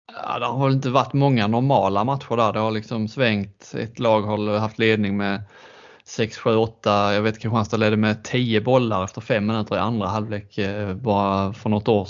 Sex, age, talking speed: male, 30-49, 190 wpm